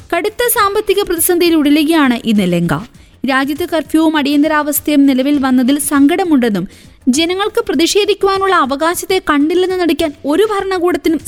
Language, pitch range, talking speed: Malayalam, 260-335 Hz, 80 wpm